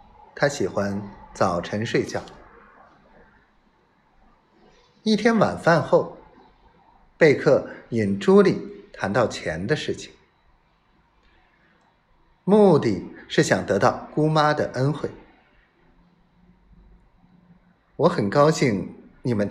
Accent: native